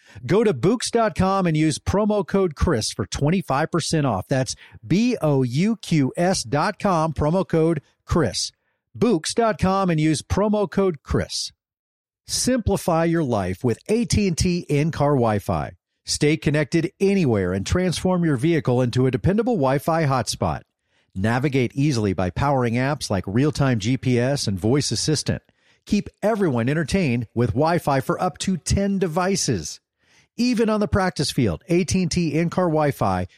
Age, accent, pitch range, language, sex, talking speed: 40-59, American, 120-180 Hz, English, male, 135 wpm